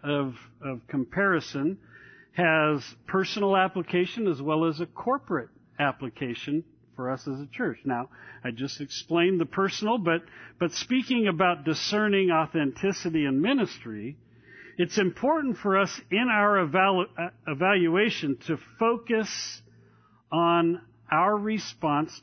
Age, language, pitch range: 50-69, English, 135-190 Hz